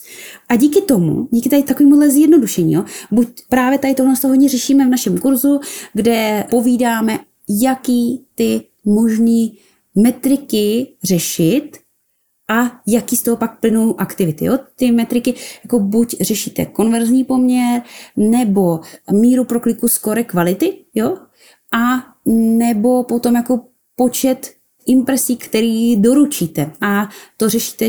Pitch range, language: 210-260 Hz, Czech